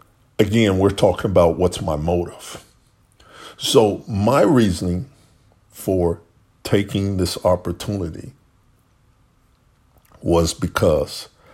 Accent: American